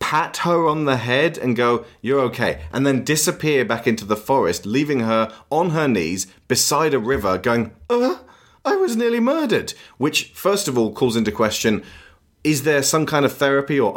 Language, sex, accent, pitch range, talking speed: English, male, British, 110-165 Hz, 190 wpm